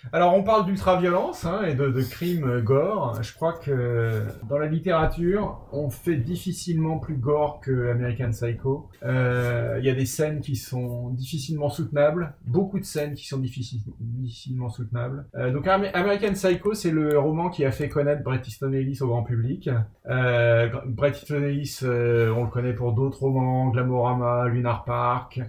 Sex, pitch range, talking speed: male, 115-150 Hz, 170 wpm